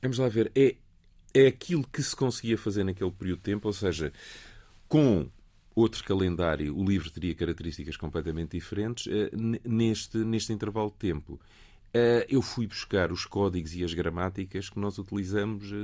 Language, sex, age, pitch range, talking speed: Portuguese, male, 40-59, 85-105 Hz, 155 wpm